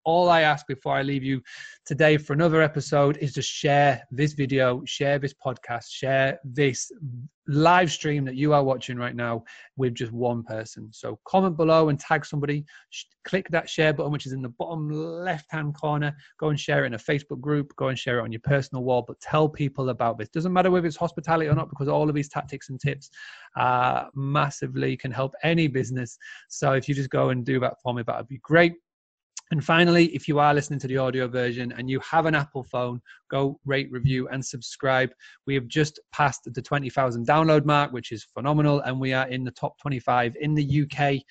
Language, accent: English, British